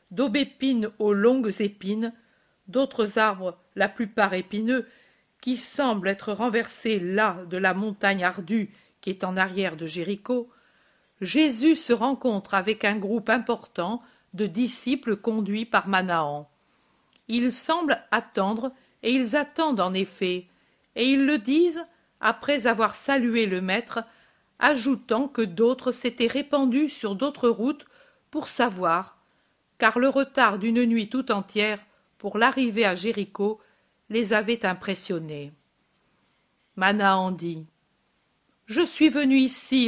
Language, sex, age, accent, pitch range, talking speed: French, female, 50-69, French, 200-255 Hz, 125 wpm